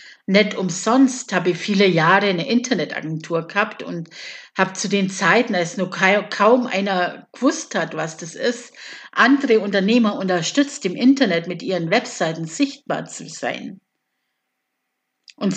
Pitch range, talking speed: 180-260 Hz, 140 wpm